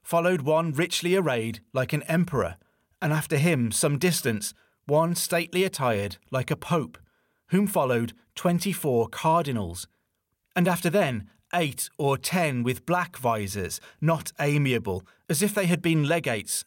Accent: British